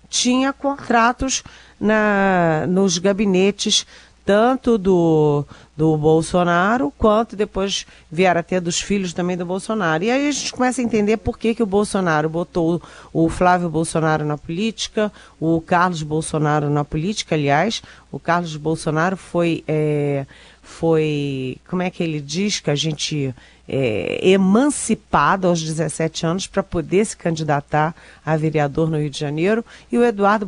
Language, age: Portuguese, 40-59